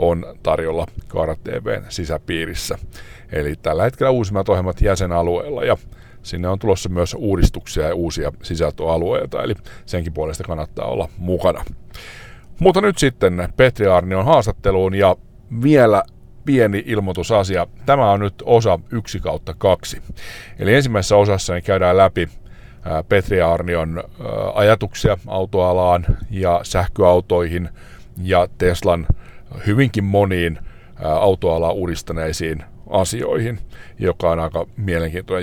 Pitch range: 85-105 Hz